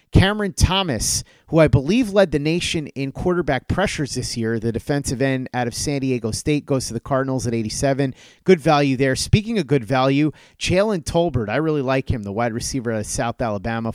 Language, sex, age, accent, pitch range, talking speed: English, male, 30-49, American, 125-155 Hz, 200 wpm